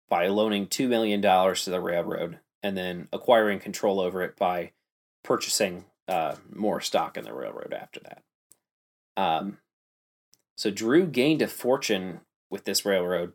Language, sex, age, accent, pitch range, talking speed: English, male, 20-39, American, 90-110 Hz, 145 wpm